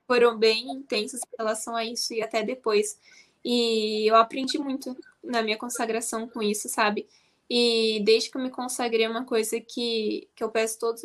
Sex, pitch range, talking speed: female, 220-255 Hz, 185 wpm